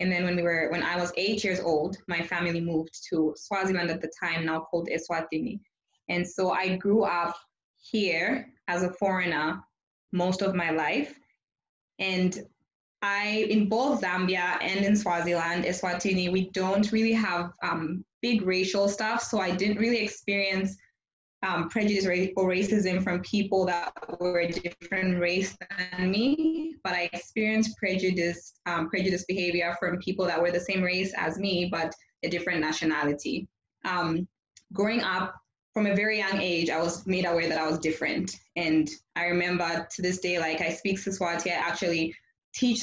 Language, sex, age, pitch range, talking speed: English, female, 20-39, 170-195 Hz, 170 wpm